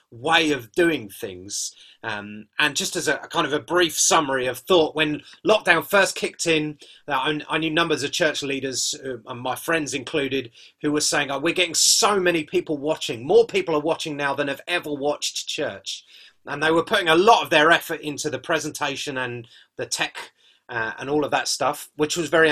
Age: 30-49